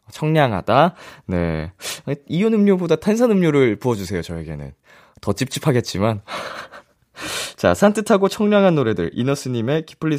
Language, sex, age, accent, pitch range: Korean, male, 20-39, native, 100-145 Hz